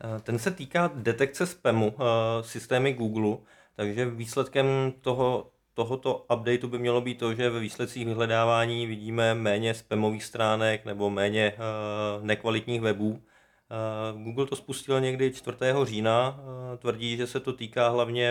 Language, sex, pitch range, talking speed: Czech, male, 110-120 Hz, 145 wpm